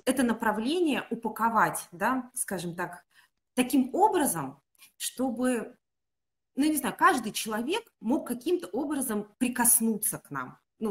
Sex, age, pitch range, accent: female, 20-39, 185-260 Hz, native